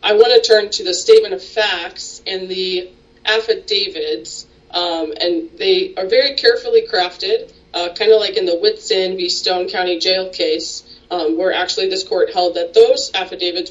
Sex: female